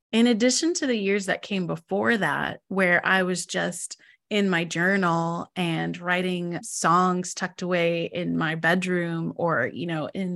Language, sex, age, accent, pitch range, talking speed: English, female, 20-39, American, 185-220 Hz, 160 wpm